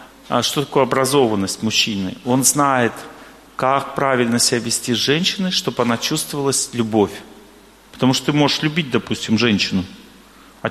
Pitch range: 120-160 Hz